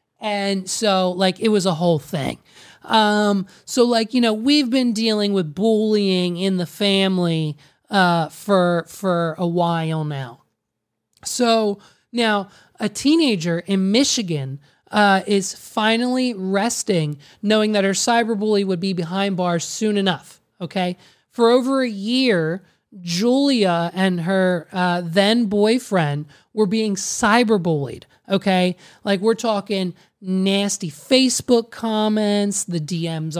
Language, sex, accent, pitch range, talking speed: English, male, American, 180-225 Hz, 130 wpm